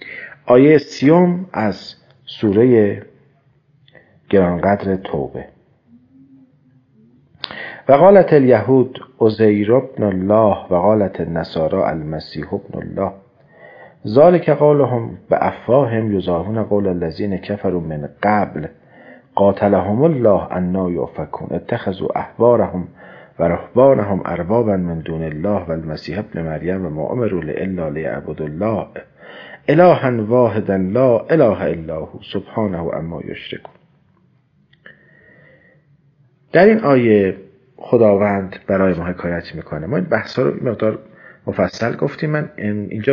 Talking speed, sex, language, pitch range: 100 wpm, male, Persian, 95-140 Hz